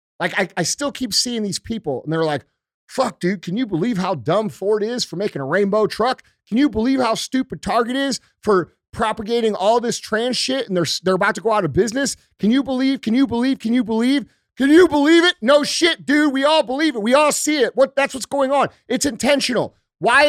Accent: American